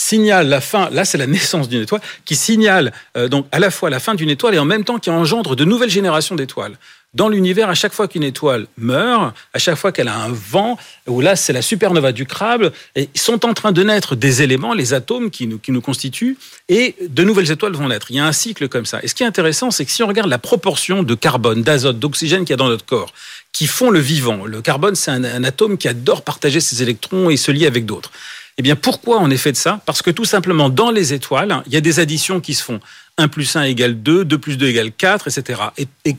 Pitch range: 135-195 Hz